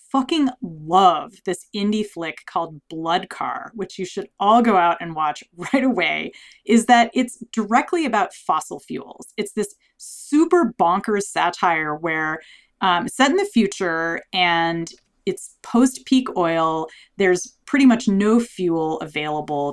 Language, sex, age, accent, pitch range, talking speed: English, female, 30-49, American, 180-255 Hz, 140 wpm